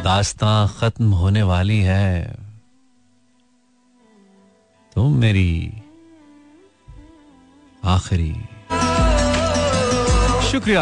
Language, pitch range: Hindi, 100-140 Hz